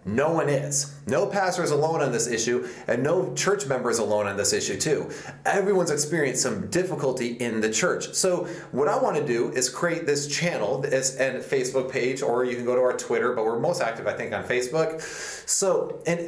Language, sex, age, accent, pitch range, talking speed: English, male, 30-49, American, 140-180 Hz, 205 wpm